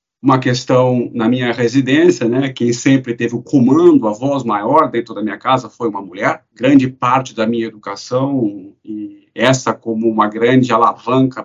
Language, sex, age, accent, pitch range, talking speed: Portuguese, male, 50-69, Brazilian, 115-140 Hz, 170 wpm